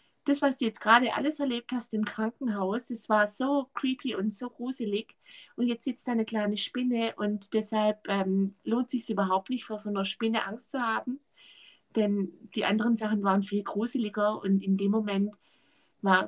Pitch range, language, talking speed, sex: 195-230 Hz, German, 180 wpm, female